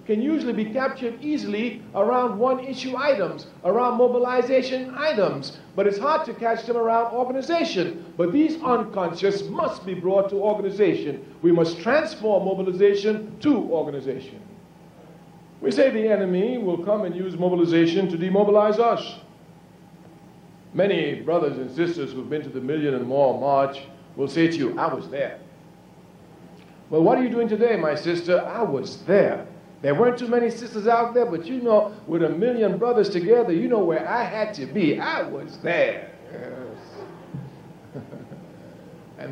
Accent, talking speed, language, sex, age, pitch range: American, 155 wpm, English, male, 60-79, 170-235 Hz